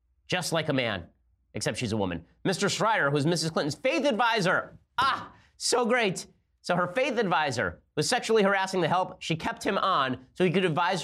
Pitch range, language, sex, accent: 130-175 Hz, English, male, American